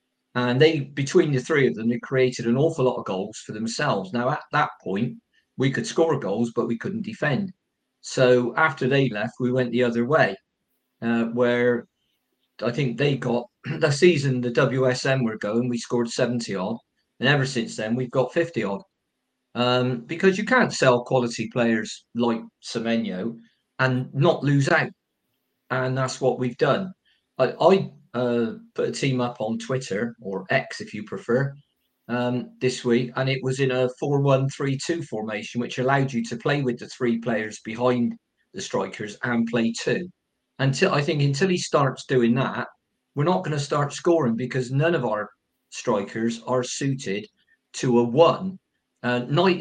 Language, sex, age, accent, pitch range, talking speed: English, male, 50-69, British, 120-140 Hz, 170 wpm